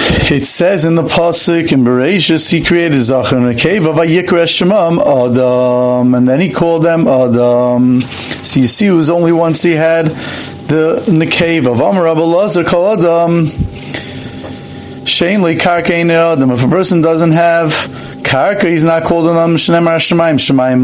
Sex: male